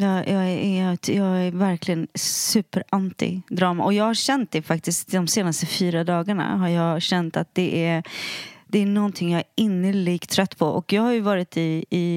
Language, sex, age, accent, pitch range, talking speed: English, female, 30-49, Swedish, 180-225 Hz, 185 wpm